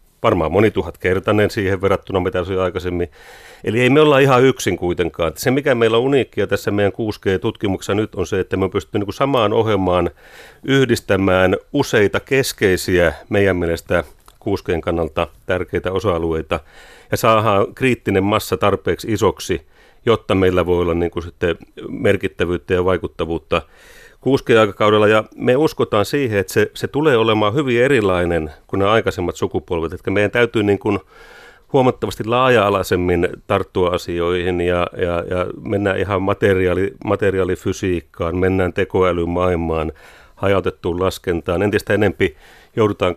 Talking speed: 130 wpm